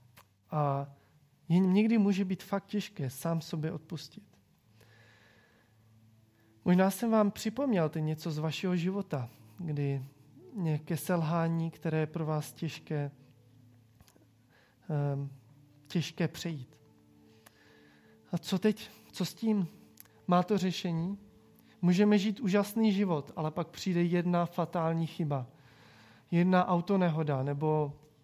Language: Czech